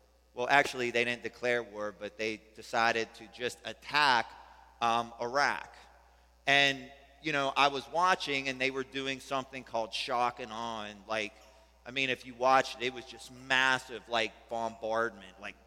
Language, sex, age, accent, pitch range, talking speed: English, male, 30-49, American, 115-135 Hz, 165 wpm